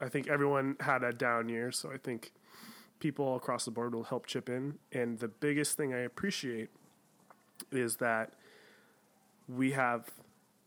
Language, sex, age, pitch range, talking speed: English, male, 30-49, 120-140 Hz, 165 wpm